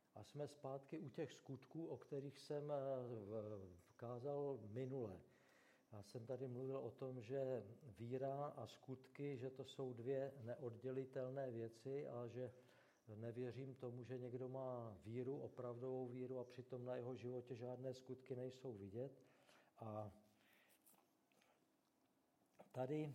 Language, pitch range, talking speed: Czech, 120-140 Hz, 125 wpm